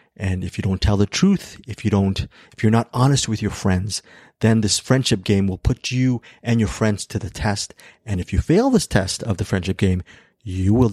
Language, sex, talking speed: English, male, 230 wpm